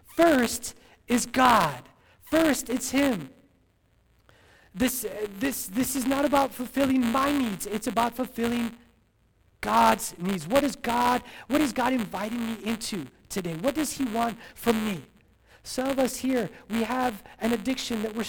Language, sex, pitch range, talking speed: English, male, 230-280 Hz, 150 wpm